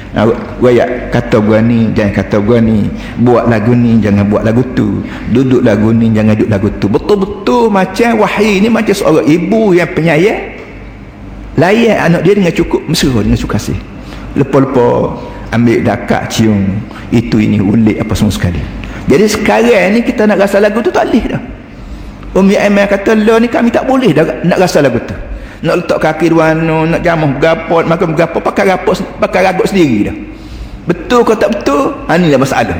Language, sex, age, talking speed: Malay, male, 50-69, 175 wpm